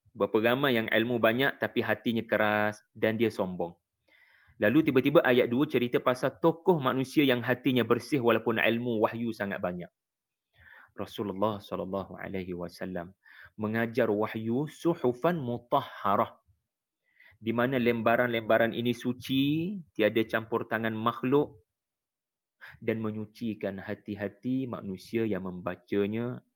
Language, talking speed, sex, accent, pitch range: English, 110 wpm, male, Indonesian, 100-120 Hz